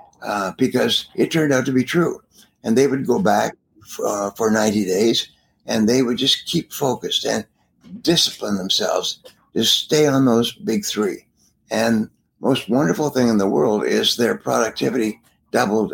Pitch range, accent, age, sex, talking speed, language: 110-135 Hz, American, 60-79, male, 165 wpm, English